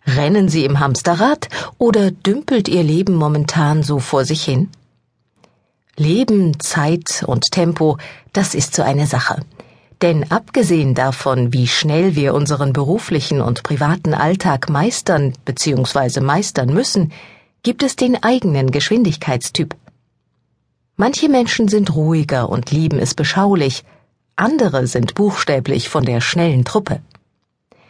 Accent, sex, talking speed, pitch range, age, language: German, female, 125 wpm, 140-195 Hz, 50-69, German